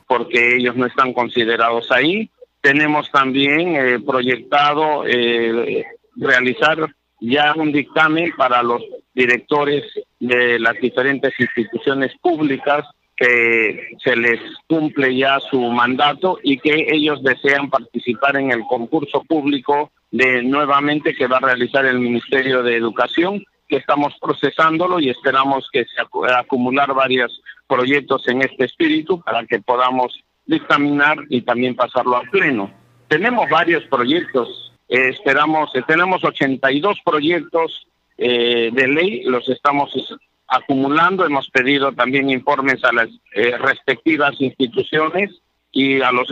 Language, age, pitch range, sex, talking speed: Spanish, 50-69, 125-150 Hz, male, 125 wpm